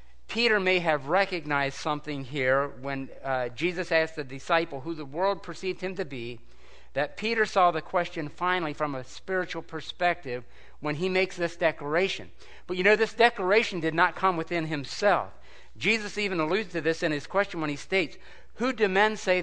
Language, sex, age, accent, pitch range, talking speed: English, male, 50-69, American, 145-190 Hz, 180 wpm